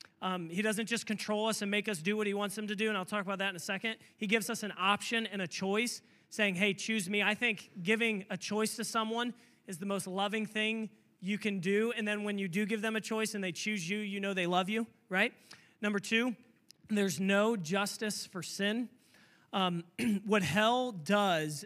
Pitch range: 185-220 Hz